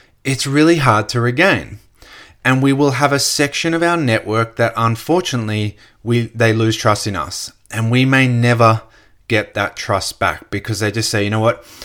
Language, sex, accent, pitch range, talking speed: English, male, Australian, 110-130 Hz, 190 wpm